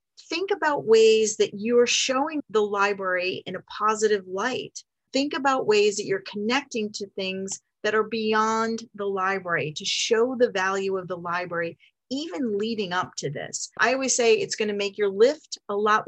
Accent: American